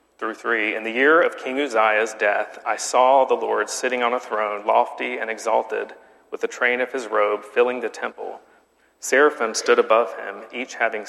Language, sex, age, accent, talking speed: English, male, 40-59, American, 185 wpm